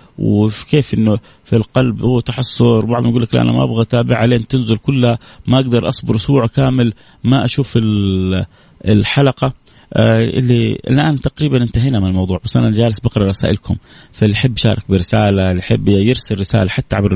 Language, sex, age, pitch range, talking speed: Arabic, male, 30-49, 100-120 Hz, 165 wpm